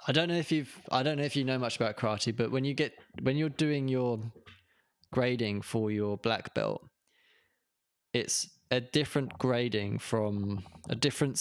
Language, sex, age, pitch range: English, male, 20-39, 110-135 Hz